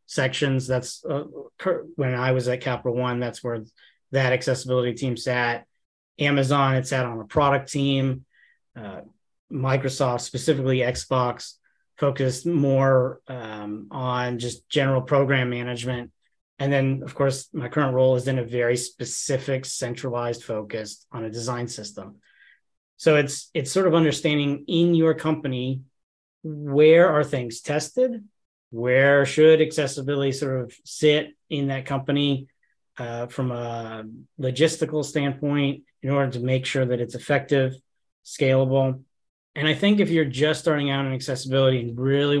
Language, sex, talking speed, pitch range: English, male, 140 wpm, 125-150 Hz